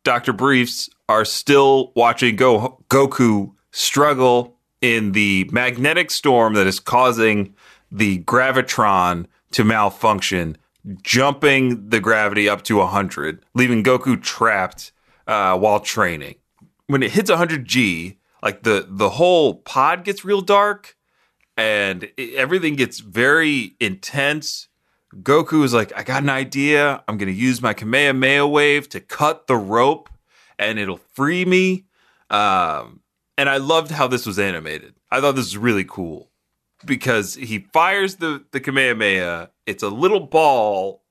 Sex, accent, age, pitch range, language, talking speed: male, American, 30-49, 110-145 Hz, English, 140 wpm